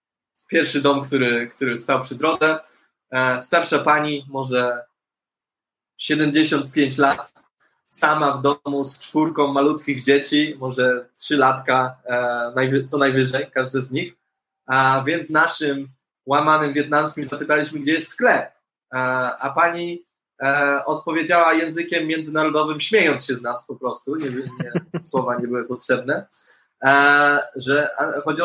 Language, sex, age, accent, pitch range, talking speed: Polish, male, 20-39, native, 130-155 Hz, 115 wpm